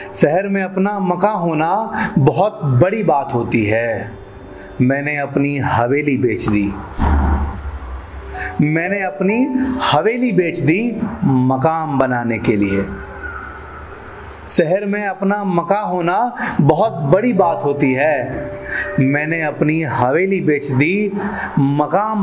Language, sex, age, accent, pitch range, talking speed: Hindi, male, 40-59, native, 120-195 Hz, 110 wpm